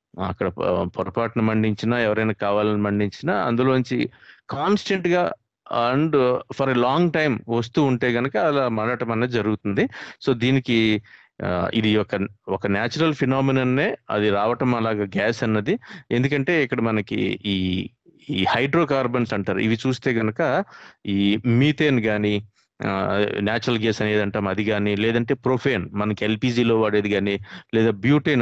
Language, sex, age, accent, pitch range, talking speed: Telugu, male, 30-49, native, 105-135 Hz, 125 wpm